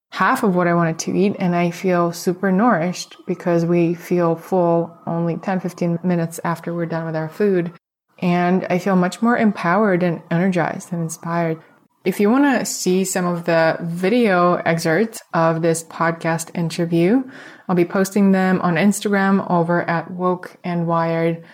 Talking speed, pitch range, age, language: 165 wpm, 170-190 Hz, 20-39, English